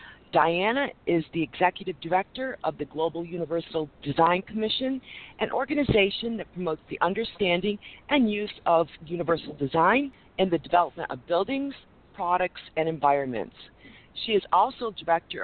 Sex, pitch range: female, 155-210 Hz